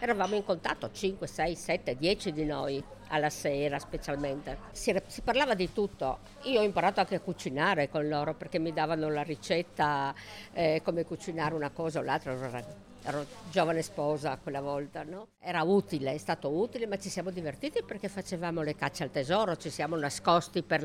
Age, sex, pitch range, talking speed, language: 50-69, female, 155-200 Hz, 185 wpm, Italian